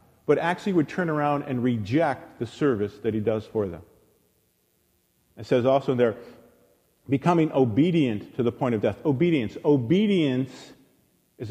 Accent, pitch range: American, 115-150 Hz